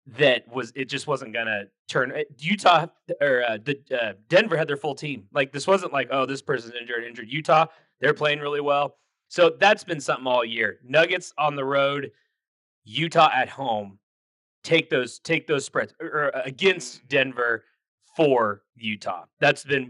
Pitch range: 115-150 Hz